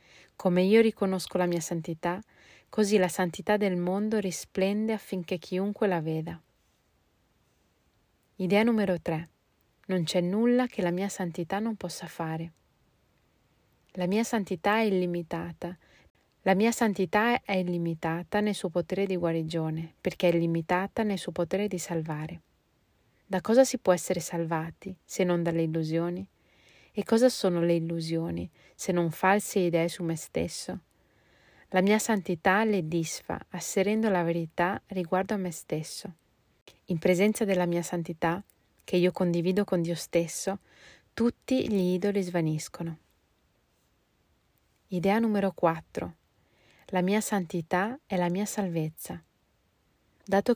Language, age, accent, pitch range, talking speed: Italian, 30-49, native, 170-200 Hz, 135 wpm